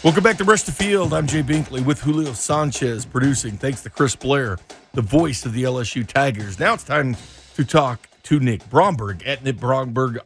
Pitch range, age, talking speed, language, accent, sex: 110-145 Hz, 40-59, 200 wpm, English, American, male